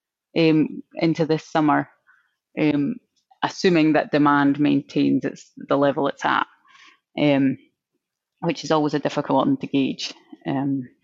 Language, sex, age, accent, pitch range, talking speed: English, female, 20-39, British, 140-160 Hz, 130 wpm